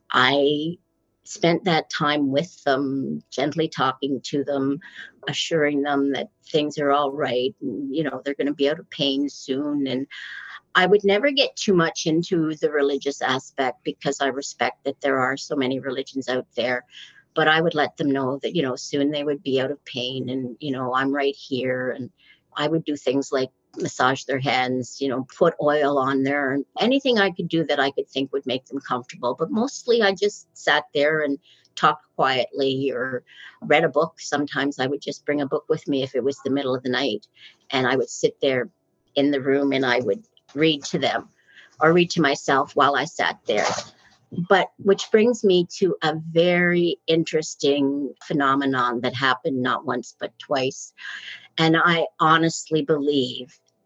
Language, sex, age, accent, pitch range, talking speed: English, female, 50-69, American, 135-160 Hz, 190 wpm